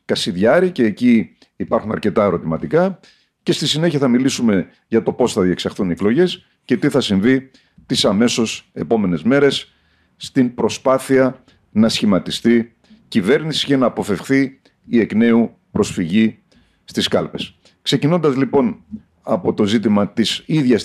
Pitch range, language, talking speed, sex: 110-175 Hz, Greek, 130 wpm, male